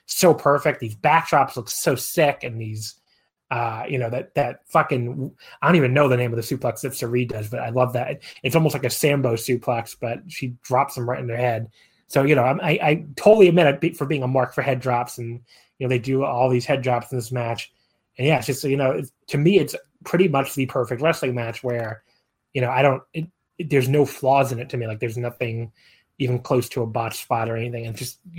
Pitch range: 120-140 Hz